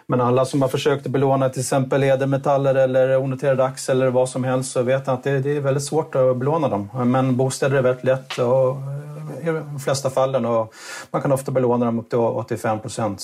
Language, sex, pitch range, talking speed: Swedish, male, 110-130 Hz, 210 wpm